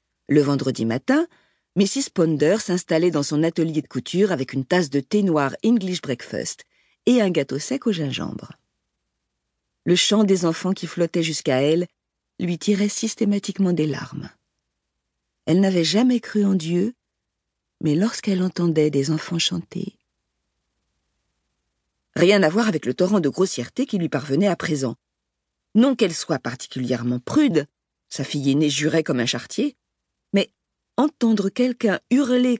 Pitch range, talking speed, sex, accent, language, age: 145-205 Hz, 145 wpm, female, French, French, 50-69